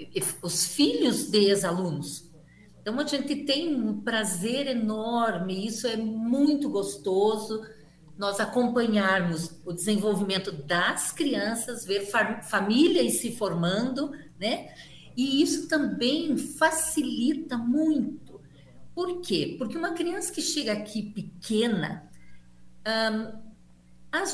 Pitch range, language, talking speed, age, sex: 185-270 Hz, Portuguese, 110 wpm, 50-69, female